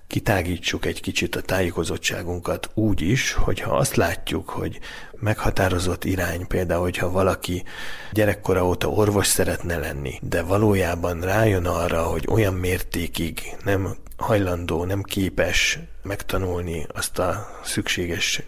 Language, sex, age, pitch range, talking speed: Hungarian, male, 40-59, 90-100 Hz, 115 wpm